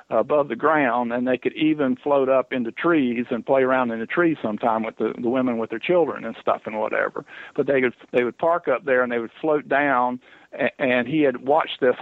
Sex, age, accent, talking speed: male, 50-69, American, 240 wpm